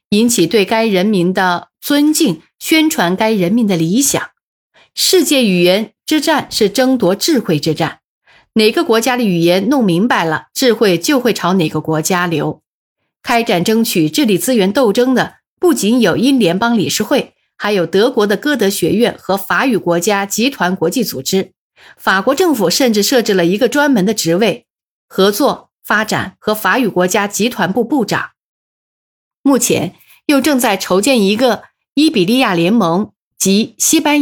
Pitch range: 180-255 Hz